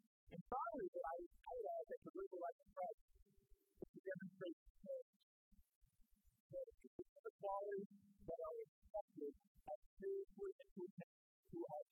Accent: American